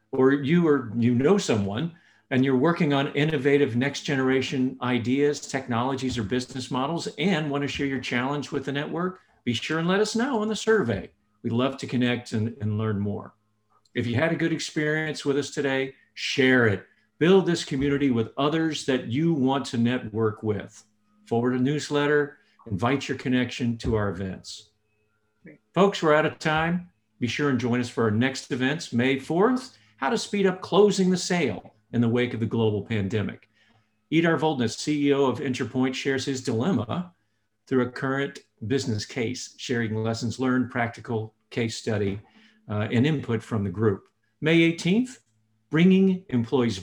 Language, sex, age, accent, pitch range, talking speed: English, male, 50-69, American, 115-150 Hz, 170 wpm